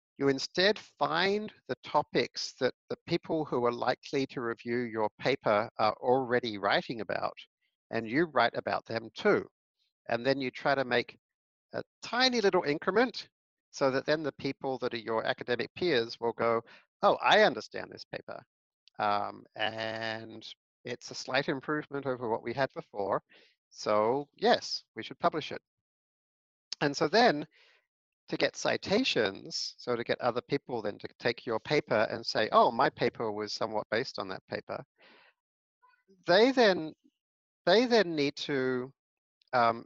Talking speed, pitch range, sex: 155 wpm, 120-165 Hz, male